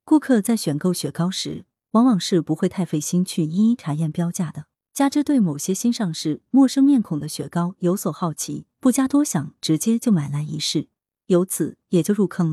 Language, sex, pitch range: Chinese, female, 155-225 Hz